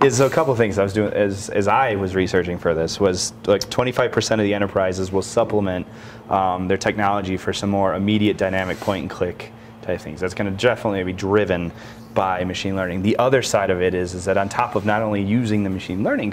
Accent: American